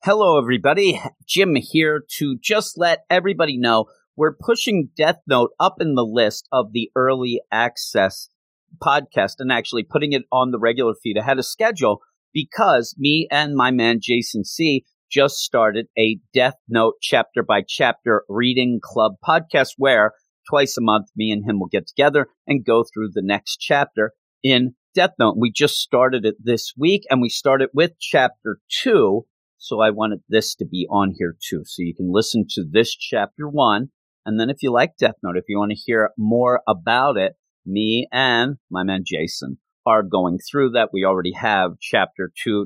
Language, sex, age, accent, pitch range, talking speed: English, male, 40-59, American, 110-140 Hz, 180 wpm